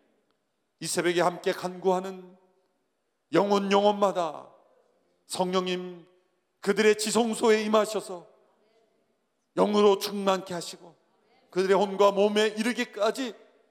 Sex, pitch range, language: male, 170-210 Hz, Korean